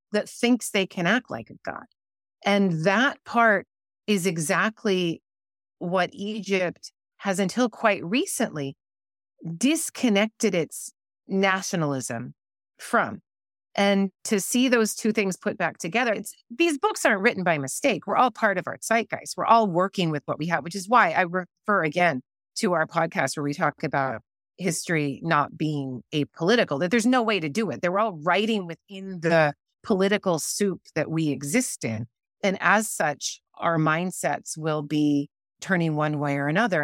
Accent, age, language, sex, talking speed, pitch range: American, 30-49, English, female, 165 wpm, 160-215 Hz